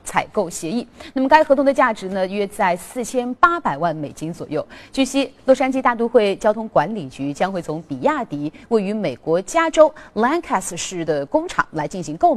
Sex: female